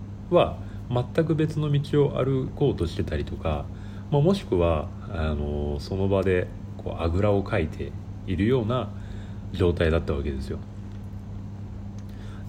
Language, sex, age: Japanese, male, 40-59